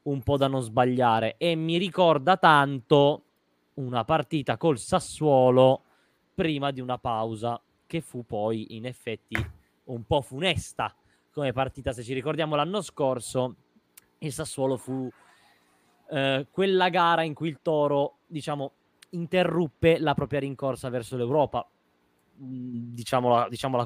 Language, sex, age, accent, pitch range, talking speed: Italian, male, 20-39, native, 110-145 Hz, 130 wpm